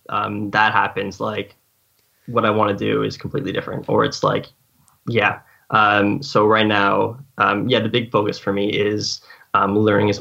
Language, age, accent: English, 10-29, American